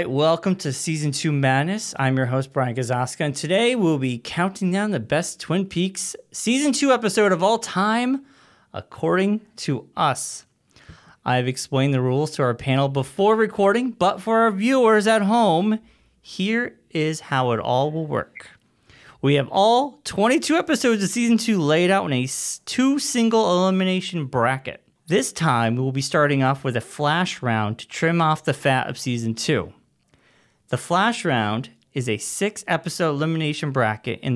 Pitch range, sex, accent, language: 130-195 Hz, male, American, English